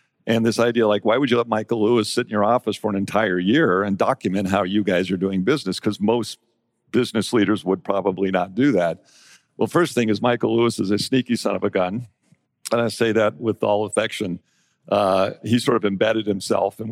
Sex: male